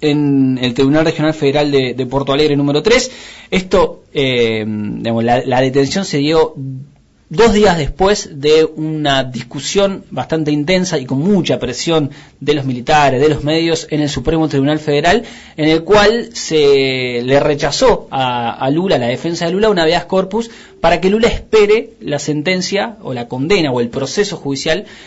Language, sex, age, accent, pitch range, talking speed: Spanish, male, 20-39, Argentinian, 135-170 Hz, 170 wpm